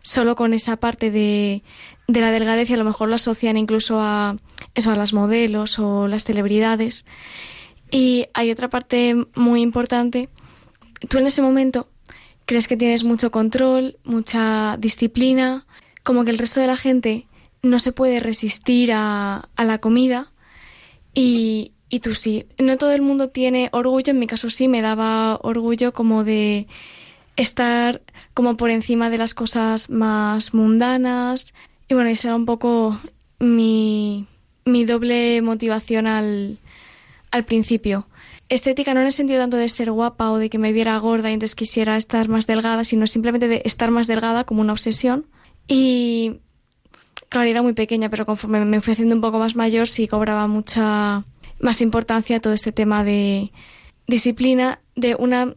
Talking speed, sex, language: 165 wpm, female, Spanish